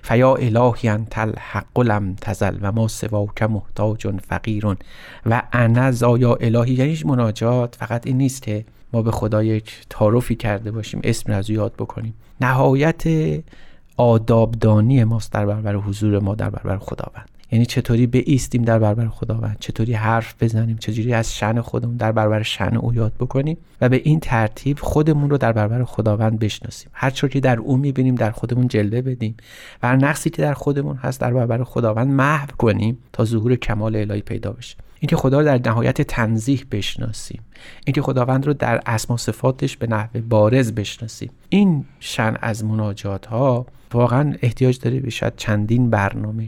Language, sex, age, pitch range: Persian, male, 30-49, 110-130 Hz